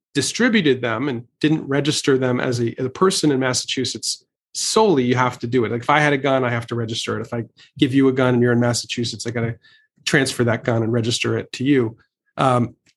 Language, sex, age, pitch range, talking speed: English, male, 40-59, 120-145 Hz, 235 wpm